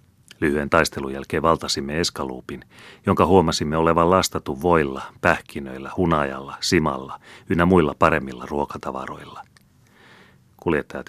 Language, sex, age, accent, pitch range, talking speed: Finnish, male, 40-59, native, 70-80 Hz, 95 wpm